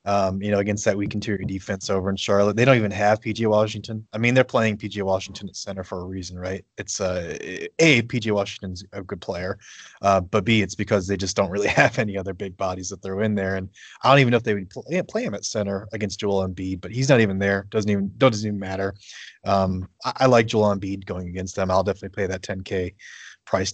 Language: English